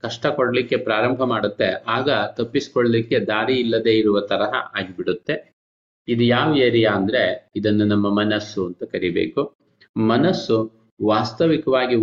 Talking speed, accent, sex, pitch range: 105 wpm, native, male, 110-130 Hz